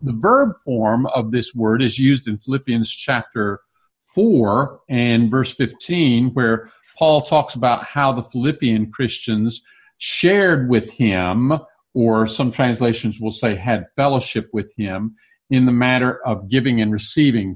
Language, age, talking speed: English, 50-69, 145 wpm